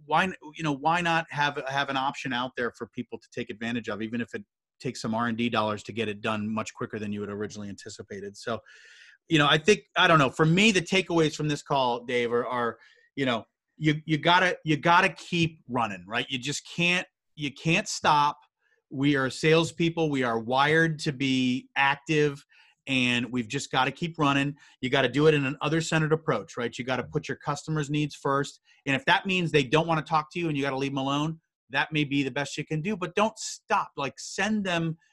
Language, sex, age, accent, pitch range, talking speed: English, male, 30-49, American, 125-165 Hz, 230 wpm